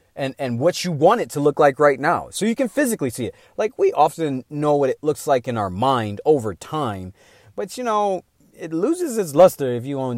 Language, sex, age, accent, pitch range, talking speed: English, male, 30-49, American, 120-175 Hz, 235 wpm